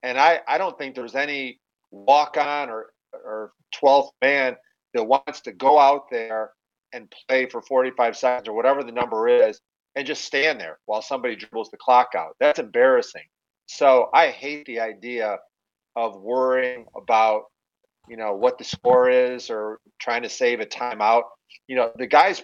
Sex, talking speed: male, 170 wpm